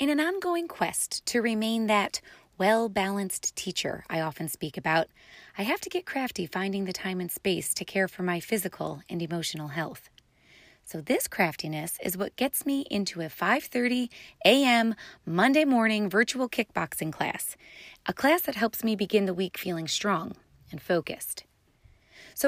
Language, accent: English, American